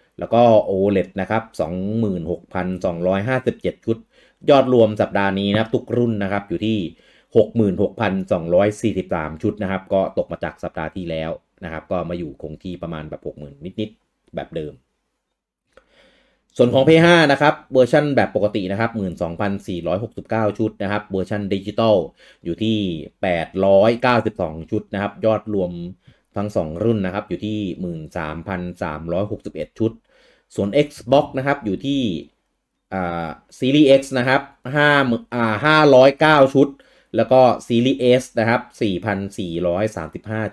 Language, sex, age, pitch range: English, male, 30-49, 95-120 Hz